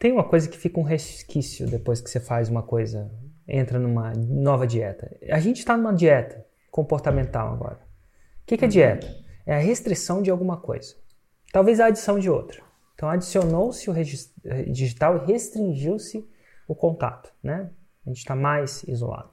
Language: Portuguese